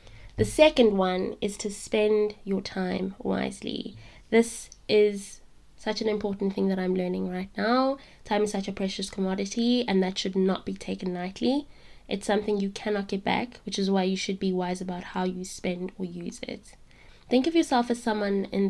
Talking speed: 190 wpm